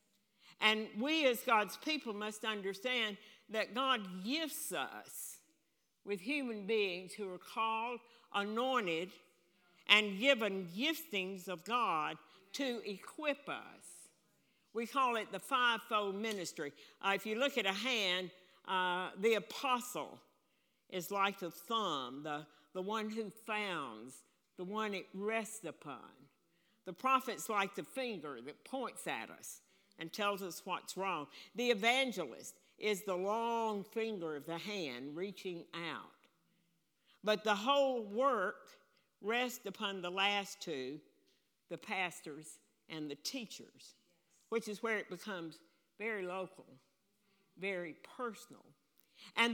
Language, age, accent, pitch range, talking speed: English, 60-79, American, 185-240 Hz, 125 wpm